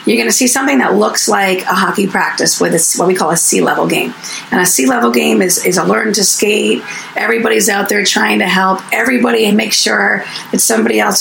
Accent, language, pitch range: American, English, 190-225 Hz